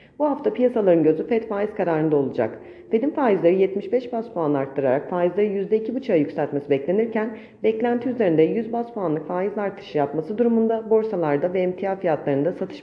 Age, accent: 40-59, native